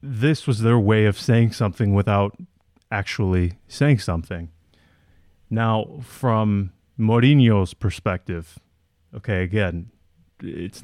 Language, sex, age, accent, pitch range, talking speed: English, male, 30-49, American, 95-125 Hz, 100 wpm